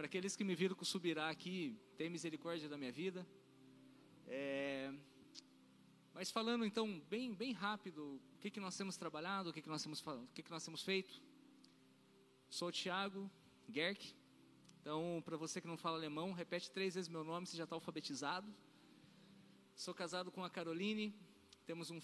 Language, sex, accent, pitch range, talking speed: Portuguese, male, Brazilian, 155-200 Hz, 175 wpm